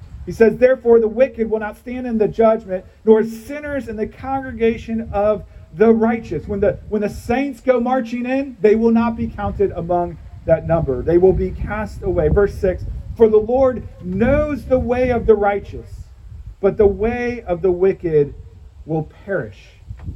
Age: 40-59